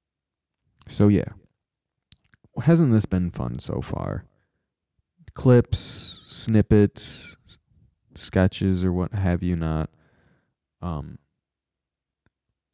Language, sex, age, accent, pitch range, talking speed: English, male, 20-39, American, 85-110 Hz, 80 wpm